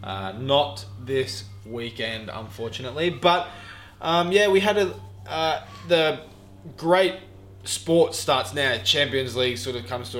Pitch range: 95-125 Hz